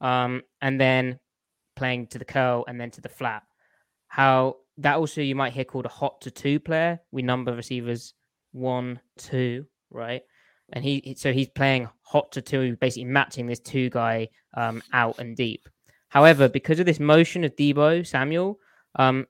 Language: English